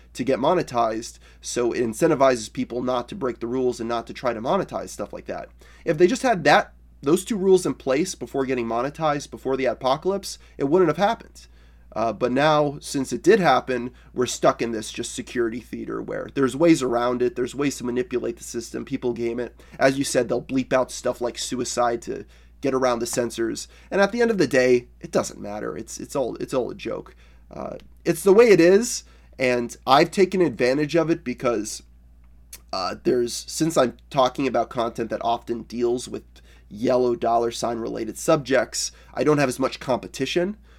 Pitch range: 115-135 Hz